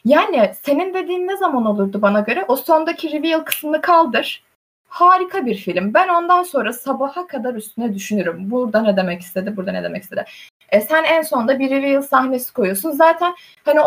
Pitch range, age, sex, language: 245-345 Hz, 20-39, female, Turkish